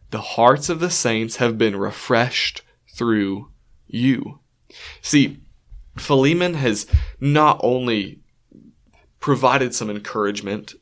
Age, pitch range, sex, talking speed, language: 20-39, 110-140 Hz, male, 100 wpm, English